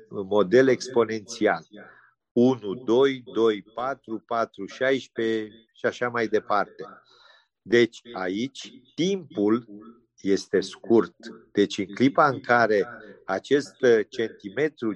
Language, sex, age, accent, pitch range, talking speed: Romanian, male, 50-69, native, 100-125 Hz, 95 wpm